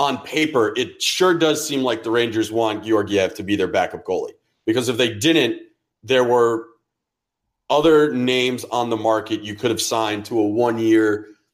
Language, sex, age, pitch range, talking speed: English, male, 30-49, 115-145 Hz, 175 wpm